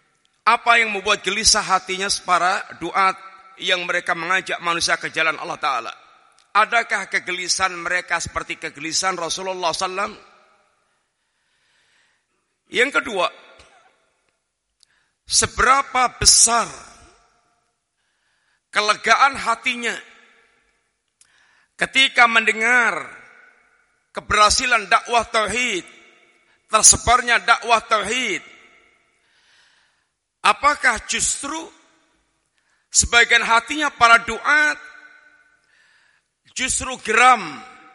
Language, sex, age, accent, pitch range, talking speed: Indonesian, male, 50-69, native, 185-245 Hz, 70 wpm